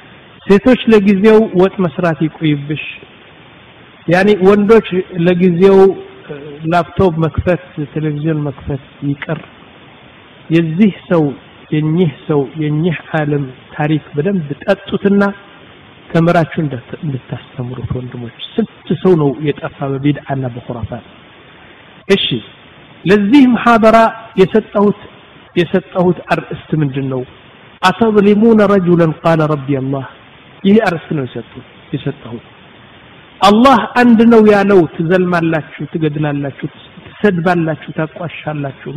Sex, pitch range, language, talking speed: male, 145-200 Hz, Amharic, 90 wpm